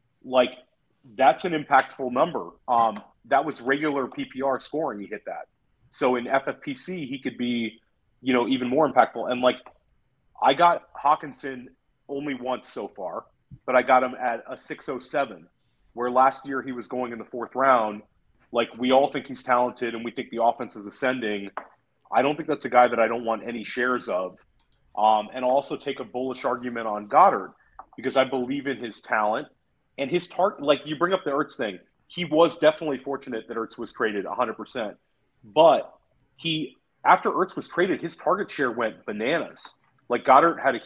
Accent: American